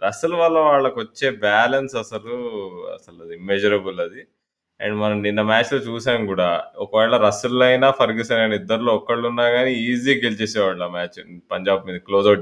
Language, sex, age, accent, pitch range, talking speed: Telugu, male, 20-39, native, 110-140 Hz, 145 wpm